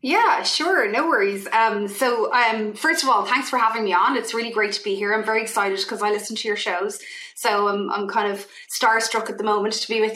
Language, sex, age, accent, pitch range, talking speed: English, female, 30-49, Irish, 205-250 Hz, 255 wpm